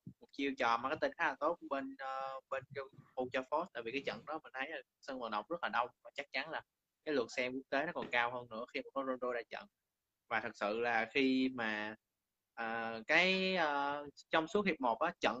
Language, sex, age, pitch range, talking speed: Vietnamese, male, 20-39, 115-140 Hz, 225 wpm